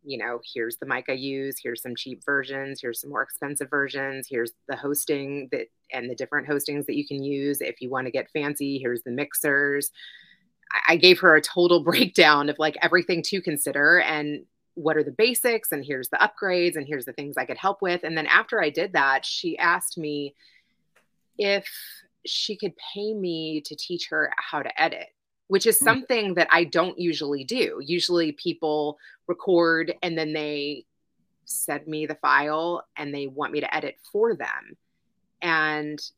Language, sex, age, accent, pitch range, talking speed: English, female, 30-49, American, 145-175 Hz, 185 wpm